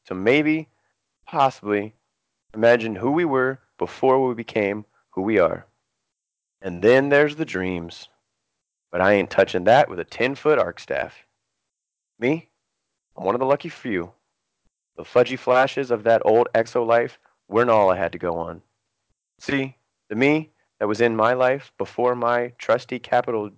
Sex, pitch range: male, 105-140 Hz